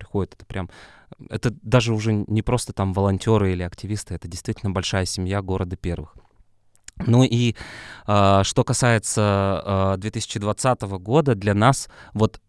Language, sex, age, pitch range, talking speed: Russian, male, 20-39, 95-115 Hz, 140 wpm